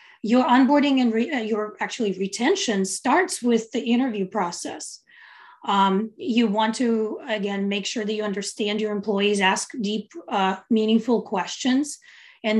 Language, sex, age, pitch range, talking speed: English, female, 30-49, 200-245 Hz, 140 wpm